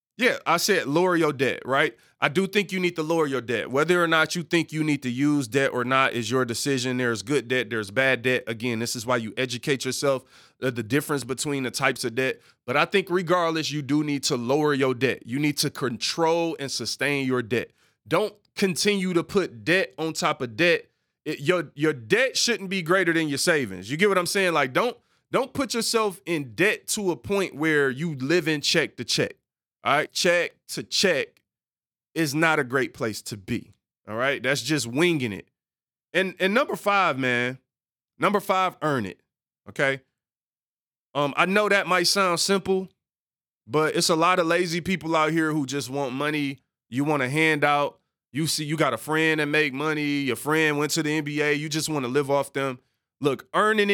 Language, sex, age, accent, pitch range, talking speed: English, male, 20-39, American, 130-170 Hz, 205 wpm